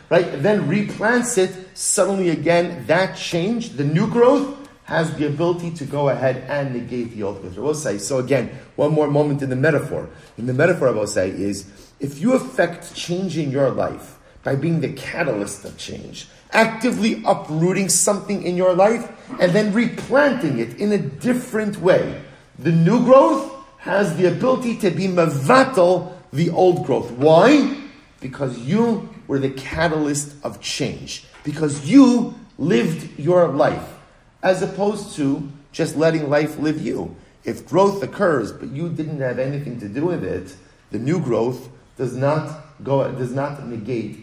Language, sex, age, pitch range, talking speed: English, male, 40-59, 135-195 Hz, 160 wpm